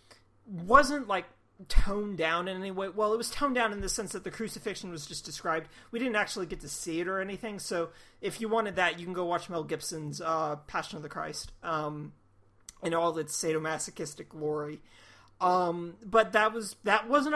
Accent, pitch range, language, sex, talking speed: American, 155-220 Hz, English, male, 200 wpm